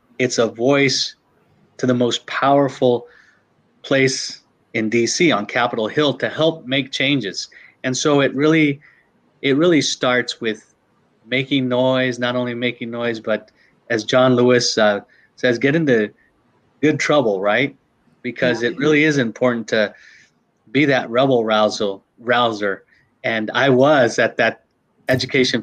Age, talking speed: 30-49, 140 wpm